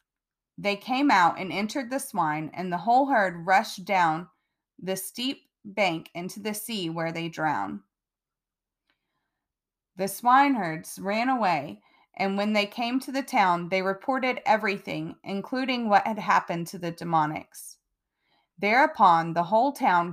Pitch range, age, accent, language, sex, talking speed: 185-245 Hz, 30-49, American, English, female, 145 wpm